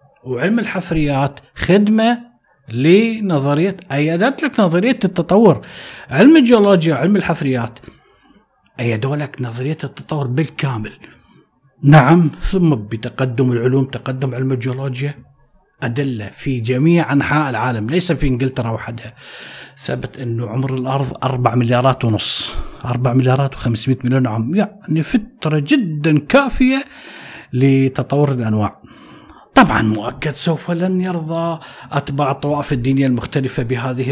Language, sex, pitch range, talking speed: Arabic, male, 125-170 Hz, 105 wpm